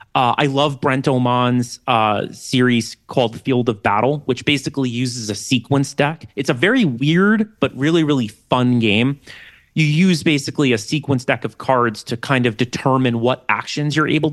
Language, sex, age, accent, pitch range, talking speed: English, male, 30-49, American, 120-150 Hz, 175 wpm